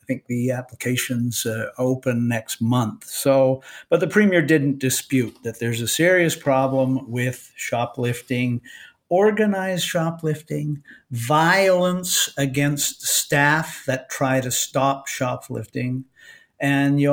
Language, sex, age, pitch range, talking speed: English, male, 60-79, 120-145 Hz, 115 wpm